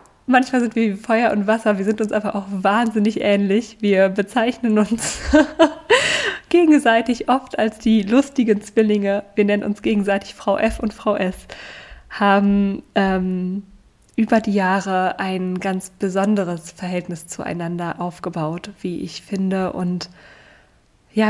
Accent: German